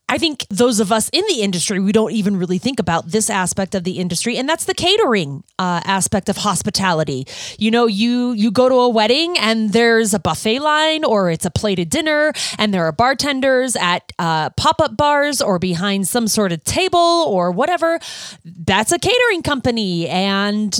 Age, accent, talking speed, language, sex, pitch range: 30-49, American, 190 wpm, English, female, 205-290 Hz